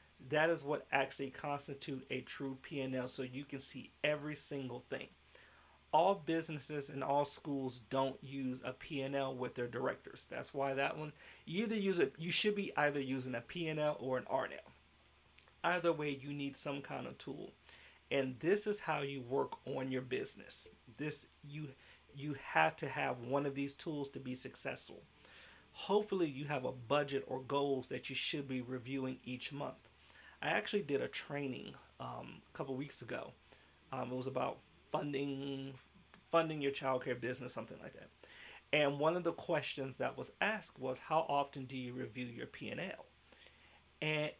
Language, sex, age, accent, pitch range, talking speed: English, male, 40-59, American, 130-150 Hz, 175 wpm